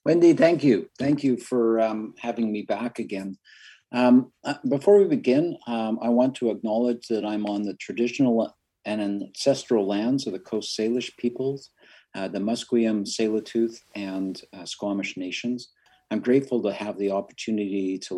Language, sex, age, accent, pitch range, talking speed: English, male, 50-69, American, 105-130 Hz, 160 wpm